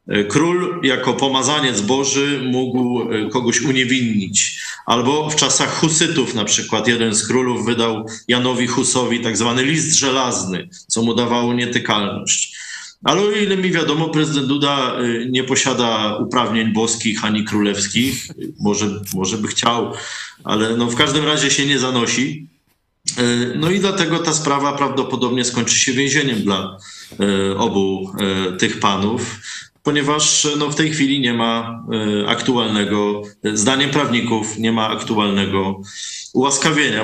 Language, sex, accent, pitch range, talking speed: Polish, male, native, 115-145 Hz, 130 wpm